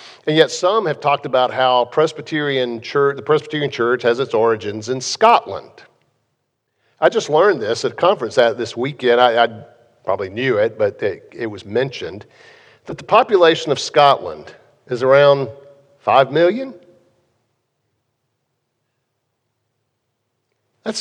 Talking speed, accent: 130 wpm, American